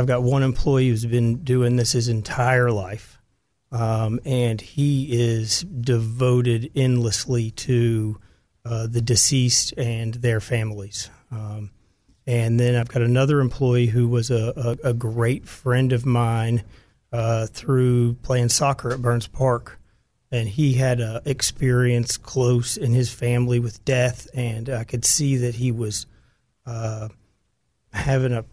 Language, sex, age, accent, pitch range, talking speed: English, male, 40-59, American, 115-130 Hz, 140 wpm